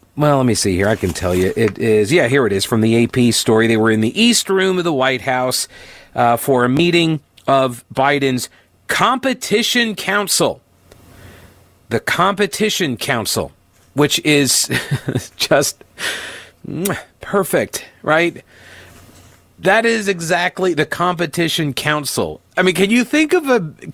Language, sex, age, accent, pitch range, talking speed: English, male, 40-59, American, 125-165 Hz, 145 wpm